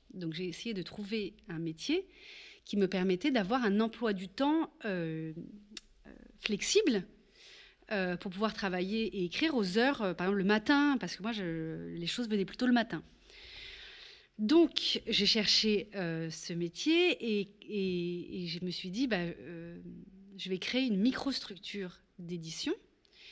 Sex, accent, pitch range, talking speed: female, French, 180-255 Hz, 160 wpm